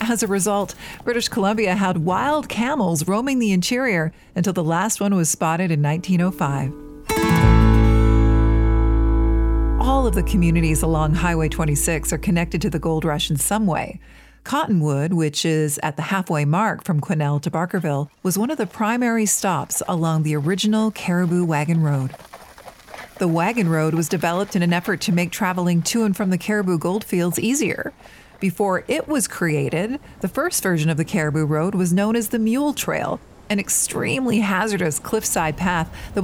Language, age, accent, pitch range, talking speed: English, 50-69, American, 160-205 Hz, 165 wpm